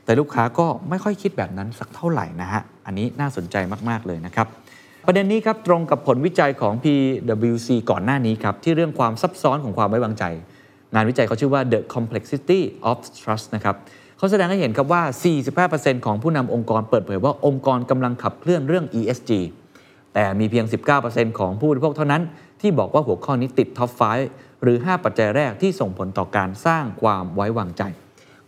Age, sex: 20-39, male